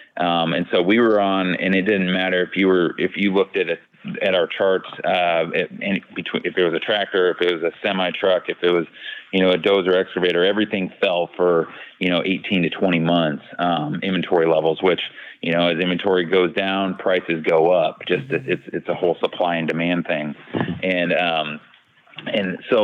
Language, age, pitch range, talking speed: English, 30-49, 85-95 Hz, 205 wpm